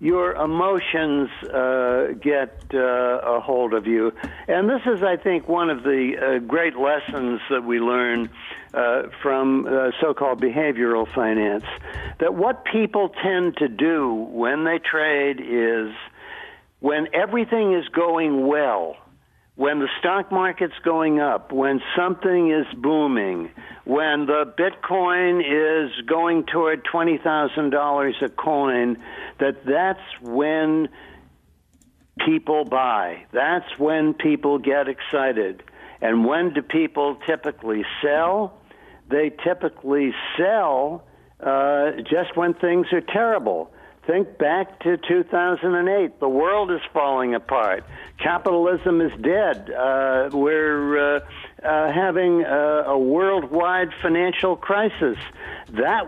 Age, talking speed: 60-79, 120 wpm